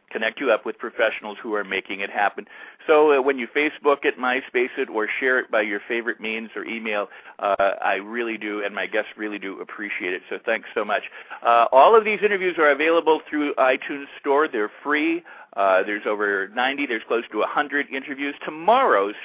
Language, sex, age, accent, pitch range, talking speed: English, male, 50-69, American, 110-145 Hz, 200 wpm